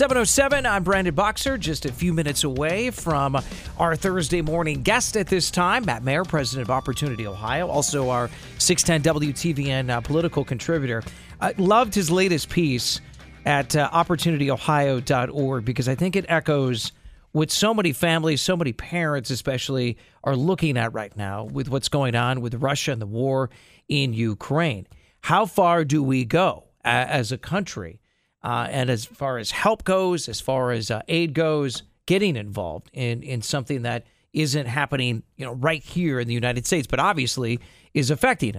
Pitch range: 125-170 Hz